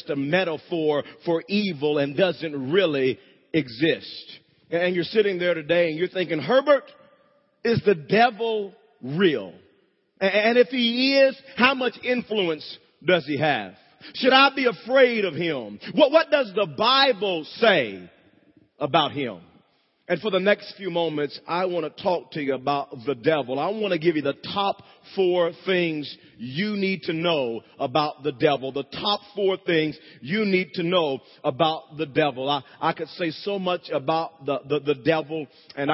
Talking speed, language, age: 165 wpm, English, 40-59